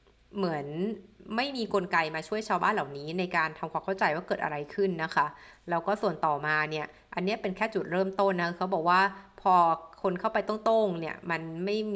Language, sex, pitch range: Thai, female, 165-200 Hz